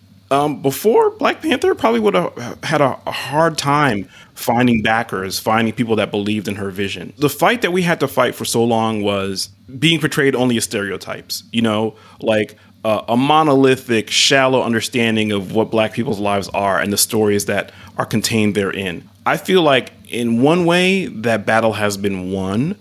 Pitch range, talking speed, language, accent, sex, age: 105-150 Hz, 180 wpm, English, American, male, 30-49